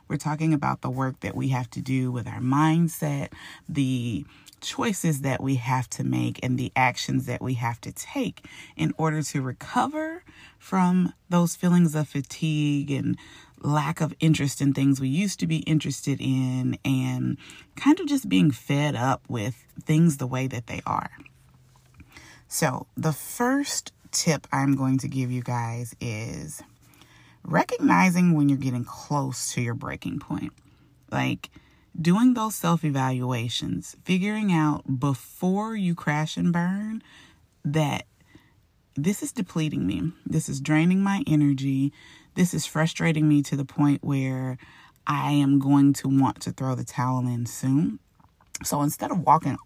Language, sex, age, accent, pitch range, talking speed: English, female, 30-49, American, 130-160 Hz, 155 wpm